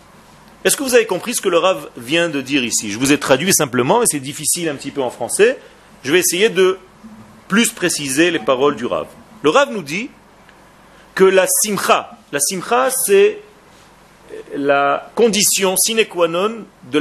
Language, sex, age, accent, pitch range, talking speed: French, male, 40-59, French, 175-245 Hz, 185 wpm